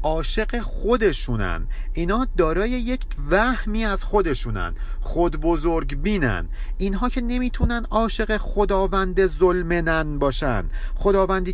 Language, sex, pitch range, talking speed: Persian, male, 140-205 Hz, 100 wpm